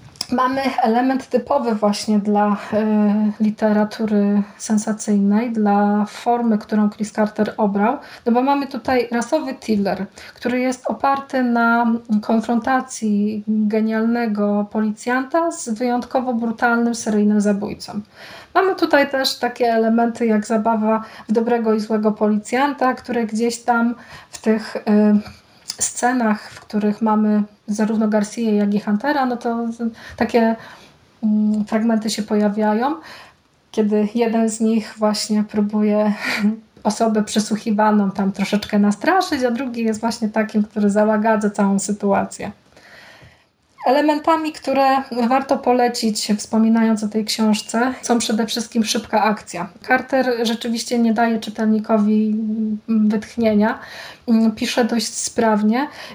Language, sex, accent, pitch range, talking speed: Polish, female, native, 215-245 Hz, 115 wpm